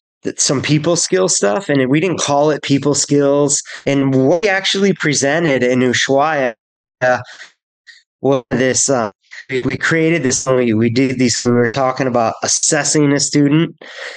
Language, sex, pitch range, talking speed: English, male, 125-150 Hz, 145 wpm